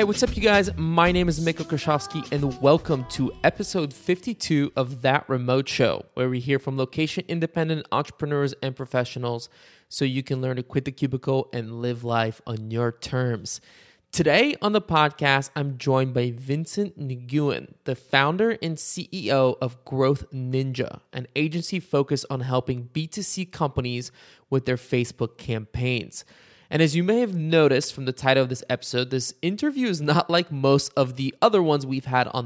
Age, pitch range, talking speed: 20-39, 130-160 Hz, 175 wpm